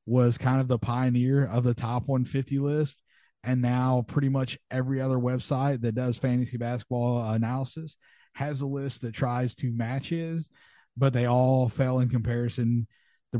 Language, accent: English, American